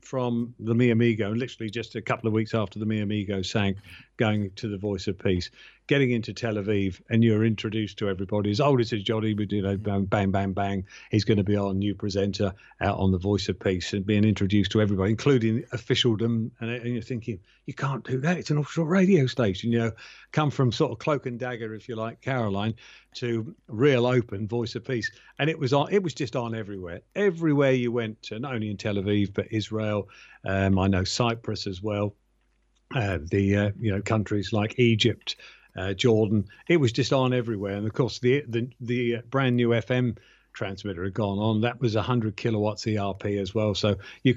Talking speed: 210 wpm